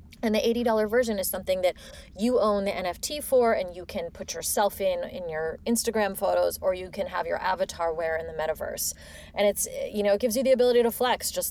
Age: 30-49